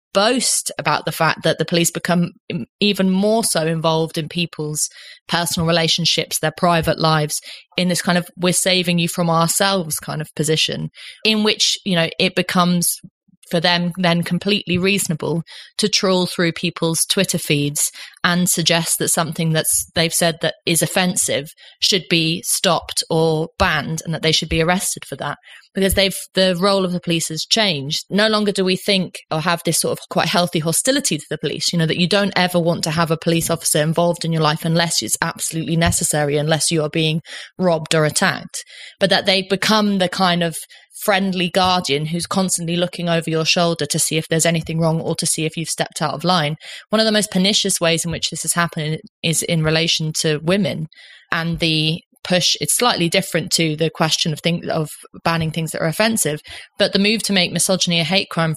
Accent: British